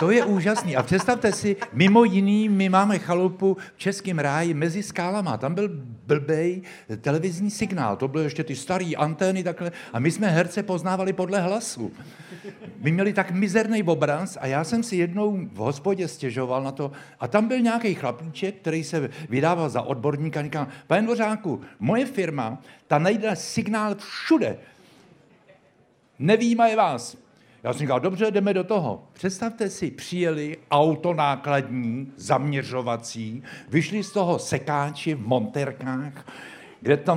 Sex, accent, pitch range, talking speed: male, native, 140-205 Hz, 145 wpm